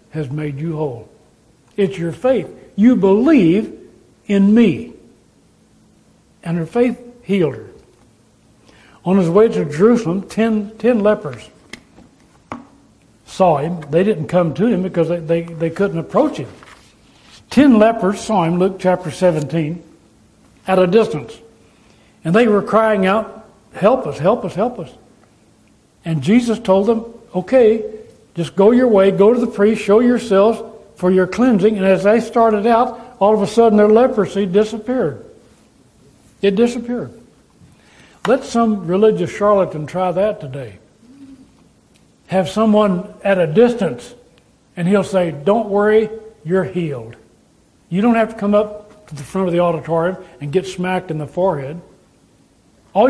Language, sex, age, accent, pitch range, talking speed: English, male, 60-79, American, 180-225 Hz, 145 wpm